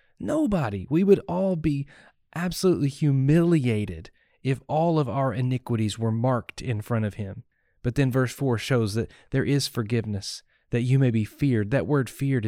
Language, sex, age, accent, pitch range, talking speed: English, male, 30-49, American, 120-170 Hz, 170 wpm